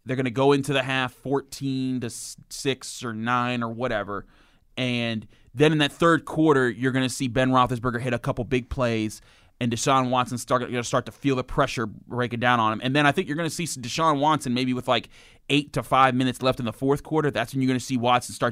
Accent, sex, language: American, male, English